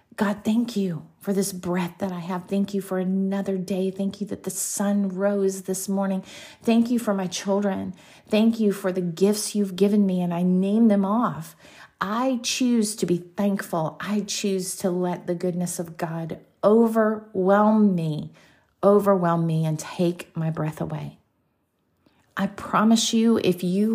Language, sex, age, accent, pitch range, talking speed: English, female, 40-59, American, 170-210 Hz, 170 wpm